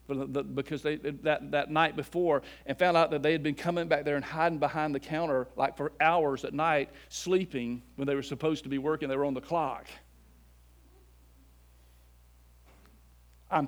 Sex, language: male, English